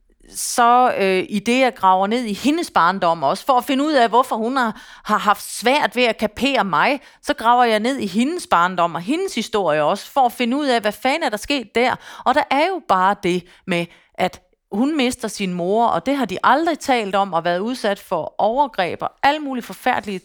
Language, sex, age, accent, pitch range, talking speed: Danish, female, 30-49, native, 180-255 Hz, 220 wpm